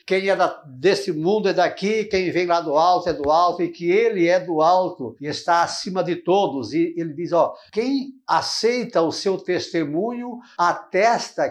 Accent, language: Brazilian, Portuguese